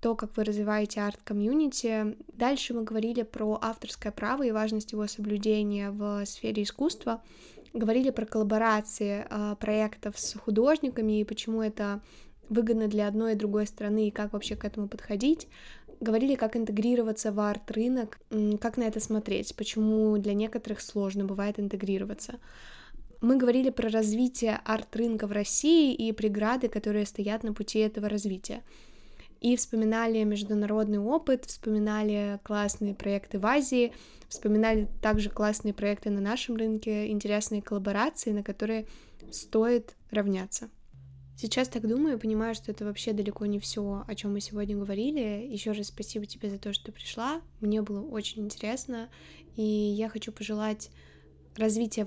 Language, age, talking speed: Russian, 20-39, 145 wpm